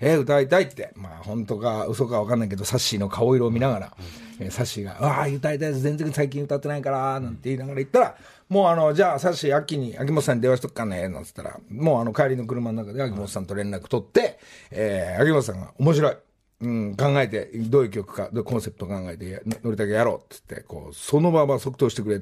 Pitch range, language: 110-170 Hz, Japanese